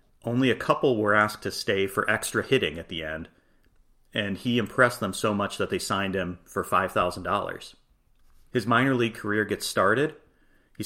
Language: English